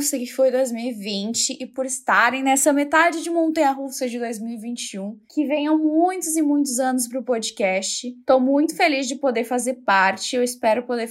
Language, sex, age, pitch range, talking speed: Portuguese, female, 10-29, 230-280 Hz, 160 wpm